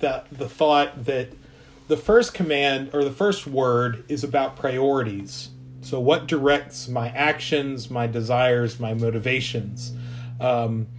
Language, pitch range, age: English, 110-135 Hz, 40-59